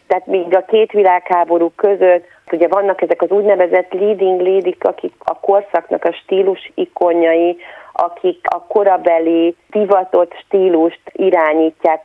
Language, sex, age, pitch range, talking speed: Hungarian, female, 30-49, 165-195 Hz, 125 wpm